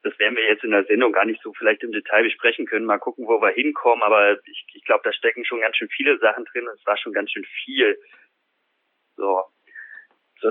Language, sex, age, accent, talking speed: German, male, 30-49, German, 230 wpm